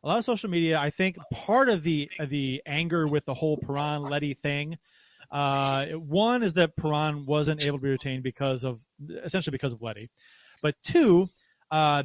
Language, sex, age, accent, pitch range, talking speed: English, male, 30-49, American, 135-170 Hz, 185 wpm